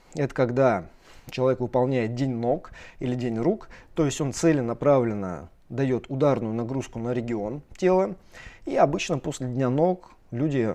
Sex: male